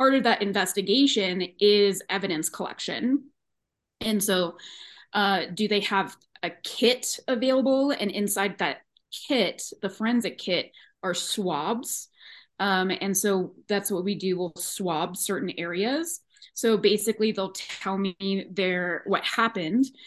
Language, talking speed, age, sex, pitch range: English, 130 wpm, 20-39, female, 185-220 Hz